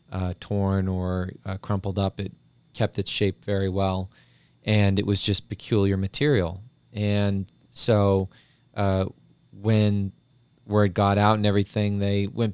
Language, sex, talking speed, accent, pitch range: English, male, 140 wpm, American, 95-110 Hz